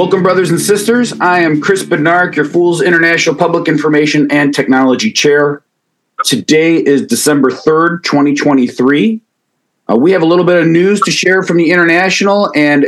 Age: 40-59